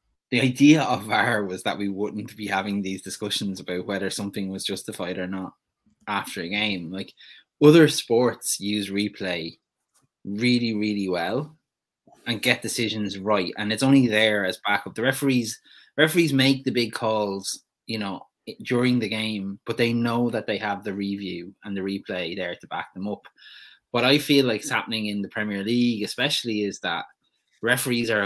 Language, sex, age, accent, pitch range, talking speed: English, male, 20-39, Irish, 95-120 Hz, 175 wpm